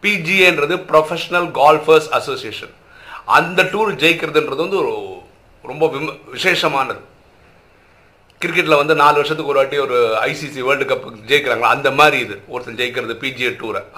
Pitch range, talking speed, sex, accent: 150-210 Hz, 105 wpm, male, native